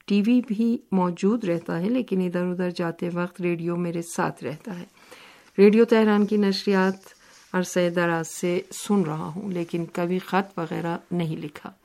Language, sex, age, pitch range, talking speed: Urdu, female, 50-69, 170-195 Hz, 160 wpm